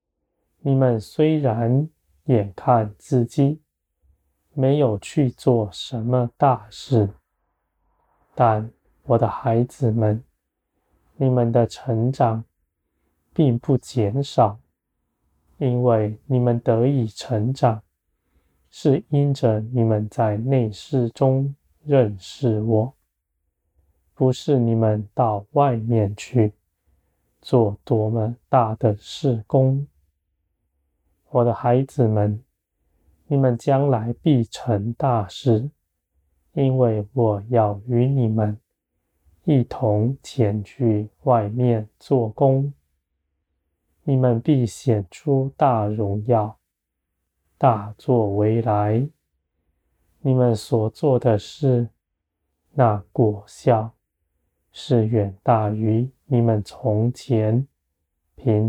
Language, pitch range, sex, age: Chinese, 85-125 Hz, male, 20-39